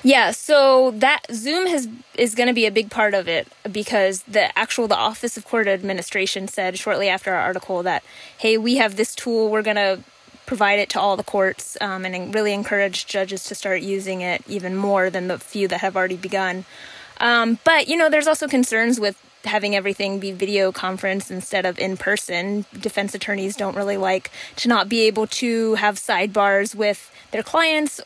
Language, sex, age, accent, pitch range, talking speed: English, female, 20-39, American, 195-230 Hz, 195 wpm